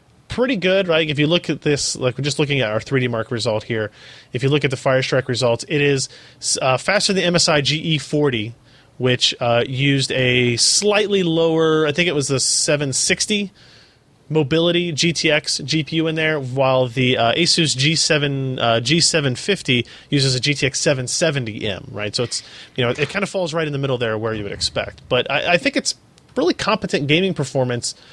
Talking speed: 190 wpm